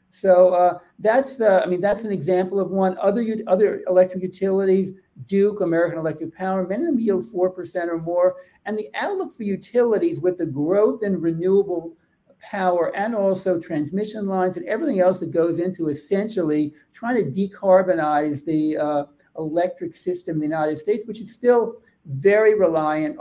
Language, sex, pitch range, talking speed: English, male, 155-200 Hz, 170 wpm